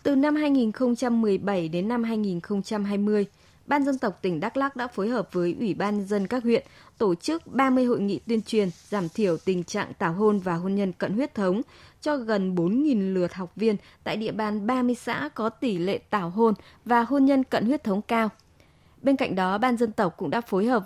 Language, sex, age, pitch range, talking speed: Vietnamese, female, 20-39, 200-255 Hz, 210 wpm